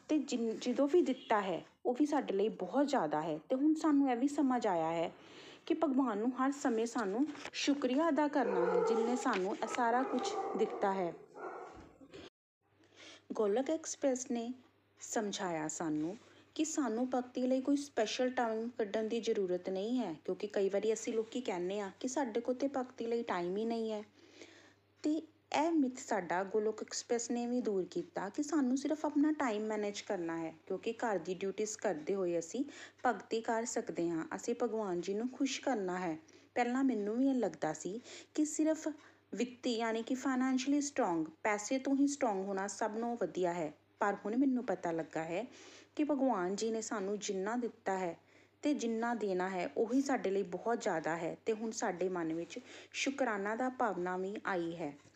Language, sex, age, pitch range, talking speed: Punjabi, female, 30-49, 195-275 Hz, 165 wpm